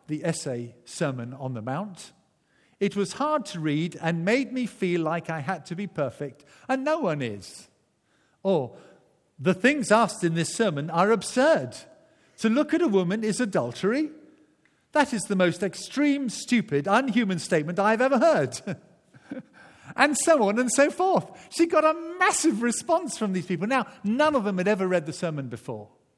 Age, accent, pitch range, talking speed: 50-69, British, 150-245 Hz, 175 wpm